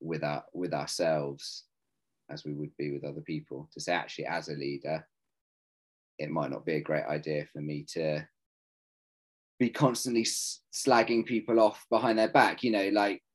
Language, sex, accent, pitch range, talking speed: English, male, British, 75-90 Hz, 170 wpm